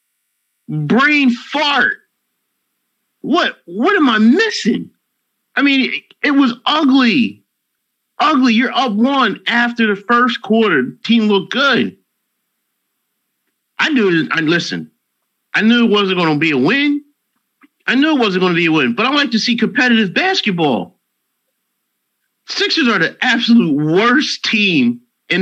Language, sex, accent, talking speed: English, male, American, 140 wpm